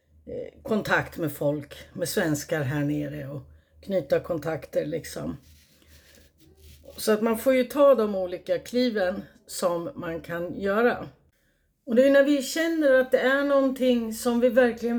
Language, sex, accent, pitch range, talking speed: Swedish, female, native, 185-260 Hz, 150 wpm